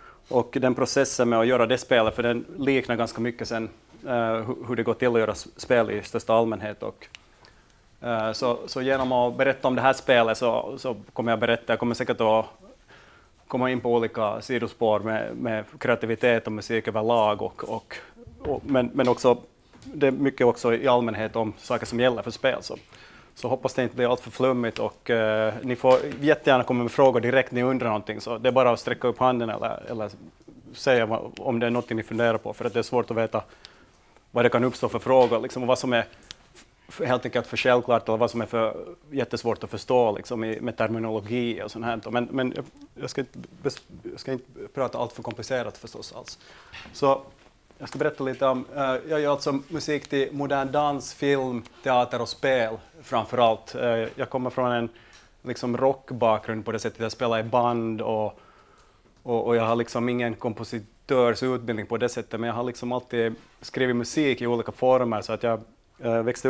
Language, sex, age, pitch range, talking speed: Swedish, male, 30-49, 115-130 Hz, 205 wpm